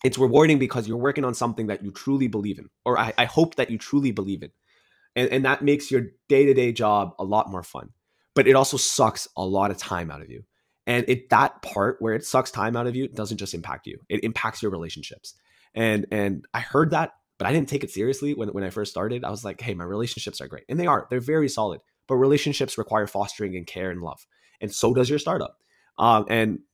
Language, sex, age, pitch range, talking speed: English, male, 20-39, 90-125 Hz, 240 wpm